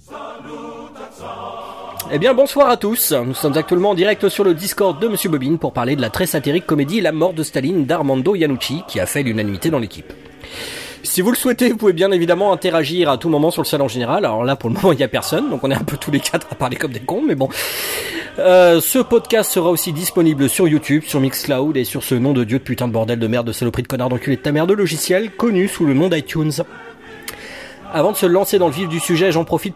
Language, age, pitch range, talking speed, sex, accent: French, 30-49, 125-180 Hz, 250 wpm, male, French